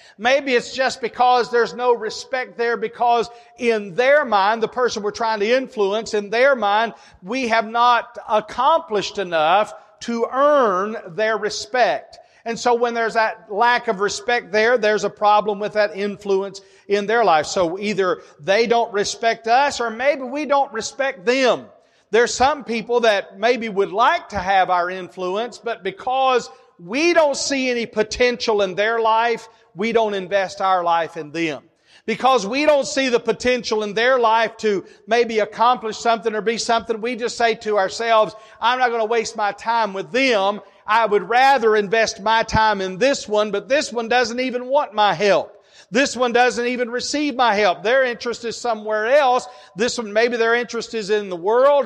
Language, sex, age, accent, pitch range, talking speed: English, male, 40-59, American, 210-245 Hz, 180 wpm